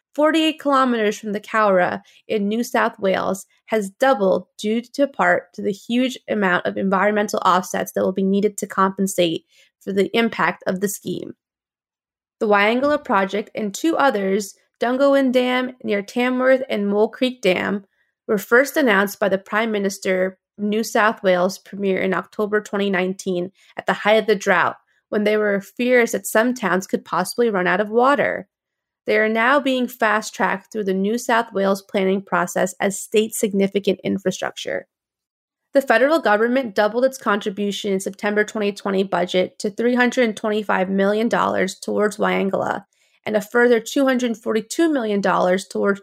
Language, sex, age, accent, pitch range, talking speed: English, female, 20-39, American, 195-235 Hz, 155 wpm